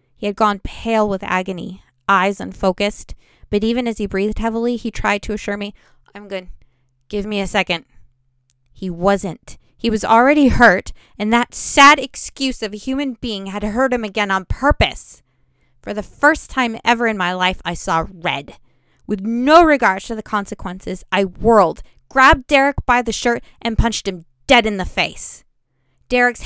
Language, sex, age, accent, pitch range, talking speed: English, female, 20-39, American, 180-235 Hz, 175 wpm